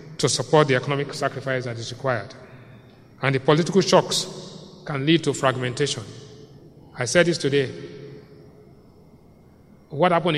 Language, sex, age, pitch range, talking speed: English, male, 30-49, 135-170 Hz, 125 wpm